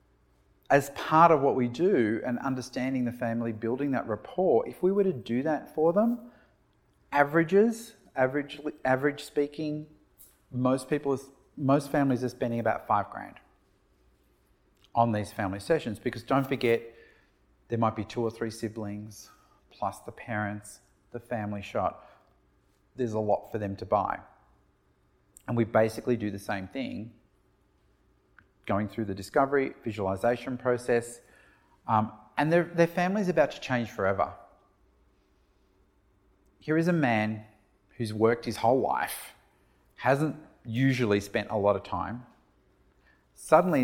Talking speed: 140 wpm